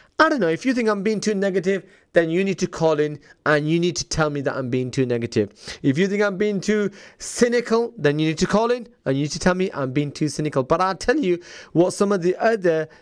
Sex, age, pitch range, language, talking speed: male, 30-49, 155-205 Hz, English, 270 wpm